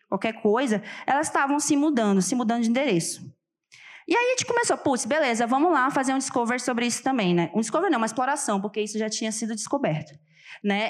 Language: Portuguese